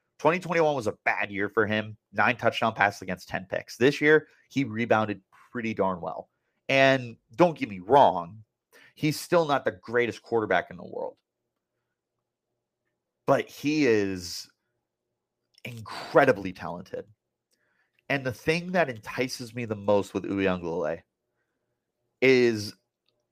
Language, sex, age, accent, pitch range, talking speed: English, male, 30-49, American, 105-135 Hz, 130 wpm